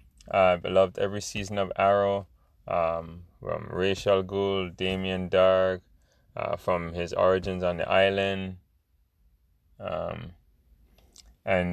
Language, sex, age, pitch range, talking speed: English, male, 20-39, 90-95 Hz, 115 wpm